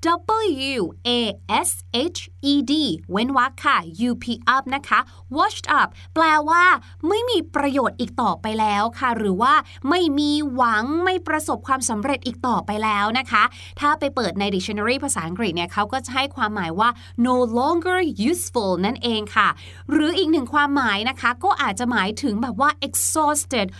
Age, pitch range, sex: 20-39, 235-315 Hz, female